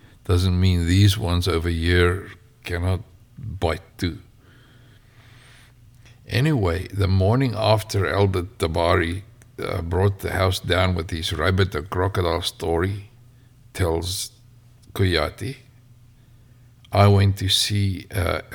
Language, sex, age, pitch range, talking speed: English, male, 60-79, 95-120 Hz, 105 wpm